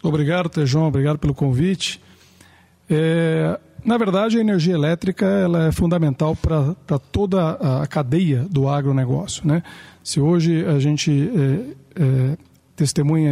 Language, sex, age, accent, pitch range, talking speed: English, male, 50-69, Brazilian, 145-180 Hz, 125 wpm